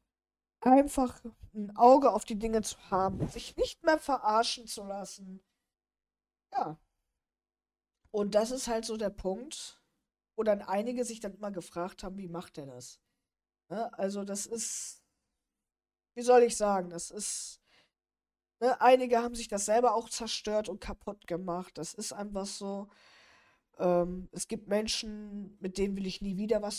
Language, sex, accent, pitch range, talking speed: German, female, German, 185-235 Hz, 155 wpm